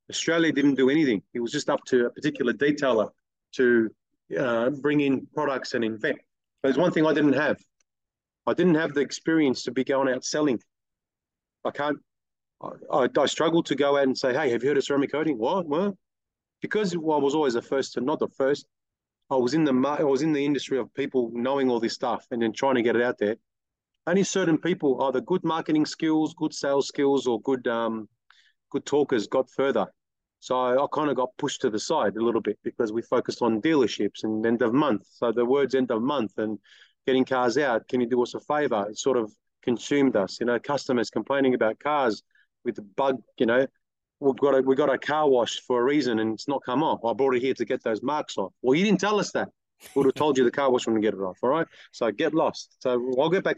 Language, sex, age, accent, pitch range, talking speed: English, male, 30-49, Australian, 120-150 Hz, 240 wpm